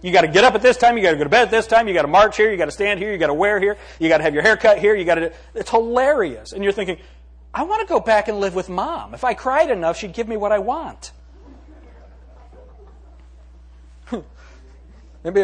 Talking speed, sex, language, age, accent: 270 wpm, male, English, 40-59, American